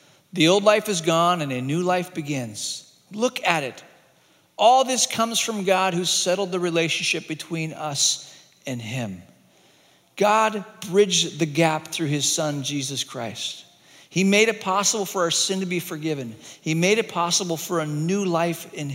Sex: male